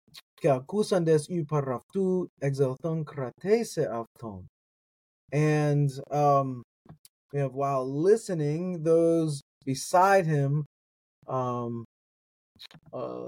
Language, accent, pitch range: English, American, 130-155 Hz